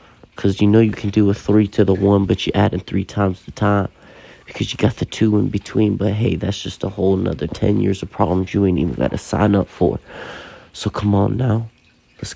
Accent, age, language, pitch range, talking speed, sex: American, 30-49, English, 80-105 Hz, 240 wpm, male